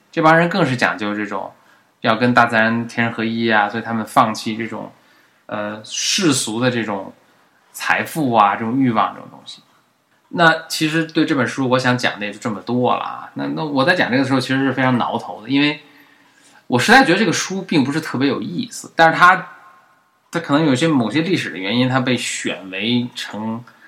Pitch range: 115-135 Hz